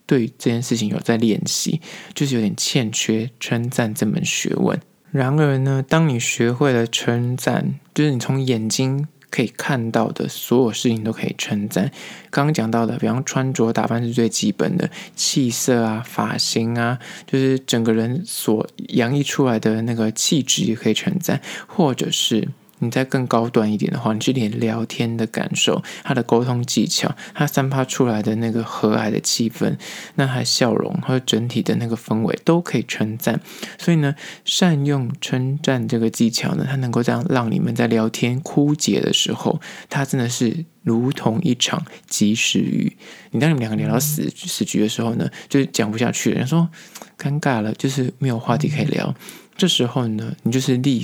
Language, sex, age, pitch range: Chinese, male, 20-39, 115-140 Hz